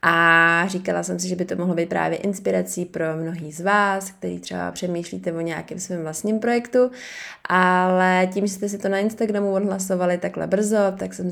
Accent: native